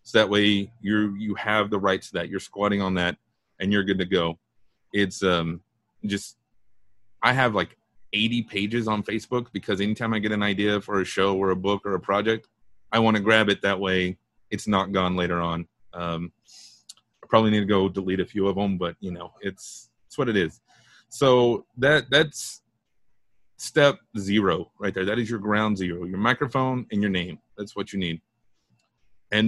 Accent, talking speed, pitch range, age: American, 195 wpm, 100-120 Hz, 30-49